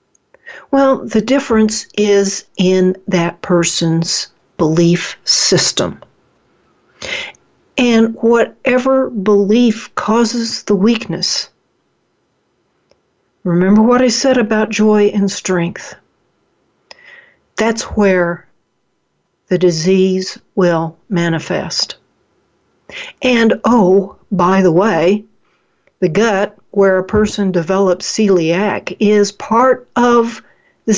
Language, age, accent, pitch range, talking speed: English, 60-79, American, 190-240 Hz, 85 wpm